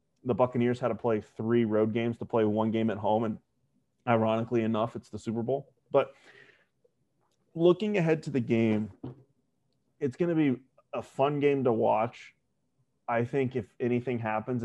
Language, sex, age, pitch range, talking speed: English, male, 30-49, 115-140 Hz, 170 wpm